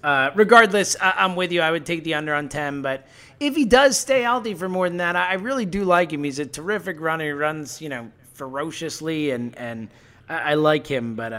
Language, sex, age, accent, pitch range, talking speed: English, male, 30-49, American, 135-195 Hz, 230 wpm